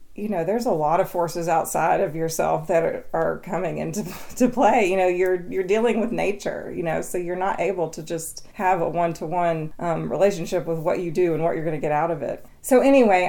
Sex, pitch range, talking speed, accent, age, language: female, 160-190 Hz, 240 wpm, American, 30-49, English